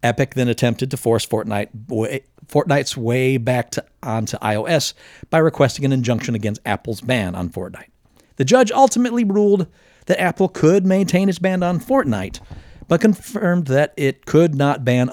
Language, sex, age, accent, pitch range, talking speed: English, male, 50-69, American, 115-165 Hz, 150 wpm